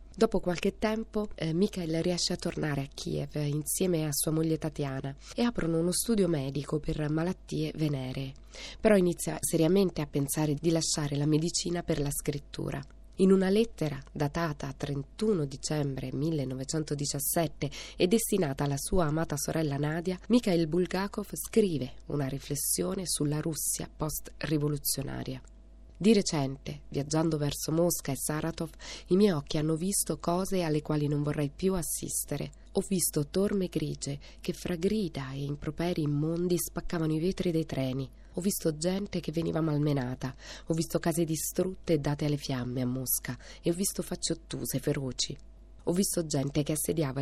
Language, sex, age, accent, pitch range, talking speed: Italian, female, 20-39, native, 145-175 Hz, 145 wpm